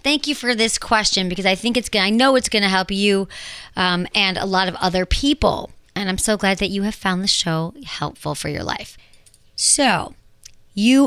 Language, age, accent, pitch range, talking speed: English, 40-59, American, 185-245 Hz, 210 wpm